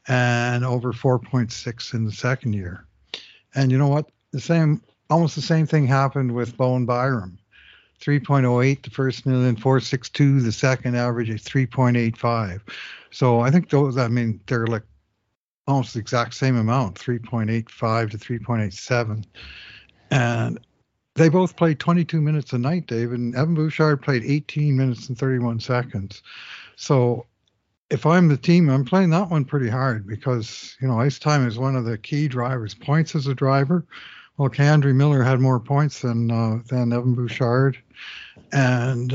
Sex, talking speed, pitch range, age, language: male, 160 wpm, 120-145 Hz, 60-79, English